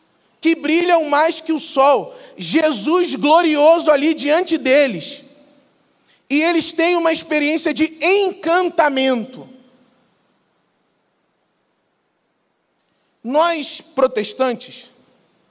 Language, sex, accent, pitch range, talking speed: Portuguese, male, Brazilian, 275-330 Hz, 75 wpm